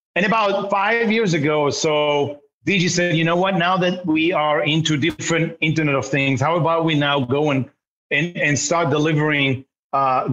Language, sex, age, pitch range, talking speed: English, male, 40-59, 135-170 Hz, 185 wpm